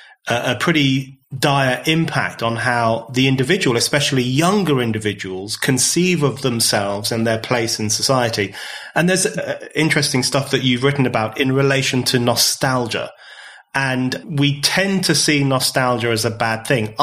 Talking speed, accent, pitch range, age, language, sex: 150 wpm, British, 115-145 Hz, 30-49, English, male